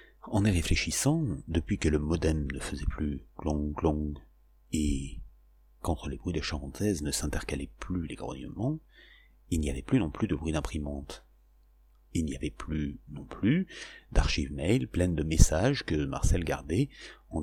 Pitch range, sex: 70-100 Hz, male